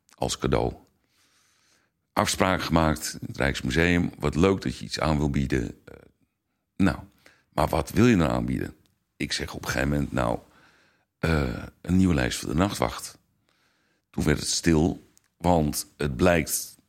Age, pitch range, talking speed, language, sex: 60-79, 70-90 Hz, 155 wpm, Dutch, male